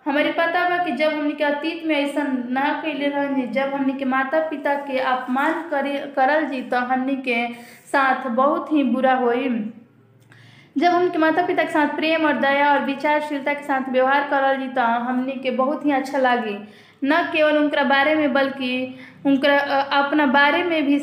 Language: Hindi